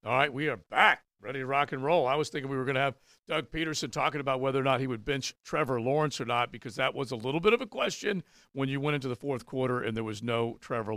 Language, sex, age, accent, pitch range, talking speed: English, male, 50-69, American, 120-145 Hz, 290 wpm